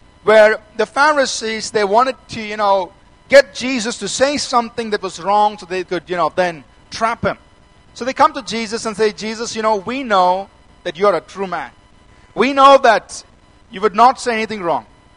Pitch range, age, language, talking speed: 195-250 Hz, 50-69, English, 200 wpm